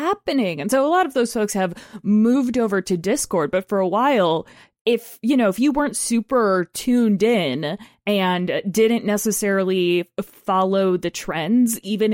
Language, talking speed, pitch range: English, 165 wpm, 185-230 Hz